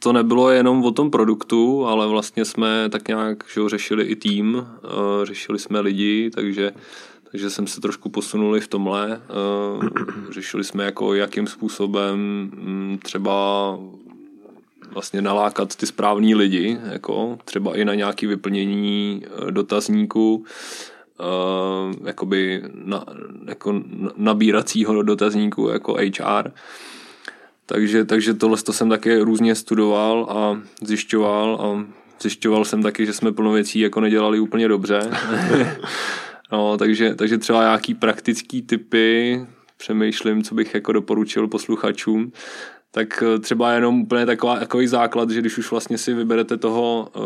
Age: 20-39